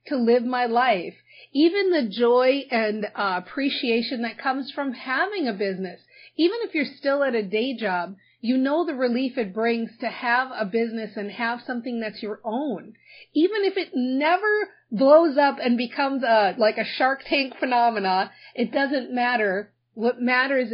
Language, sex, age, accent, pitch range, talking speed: English, female, 40-59, American, 220-280 Hz, 170 wpm